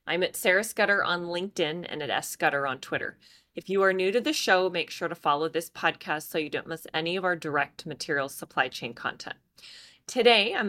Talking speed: 215 wpm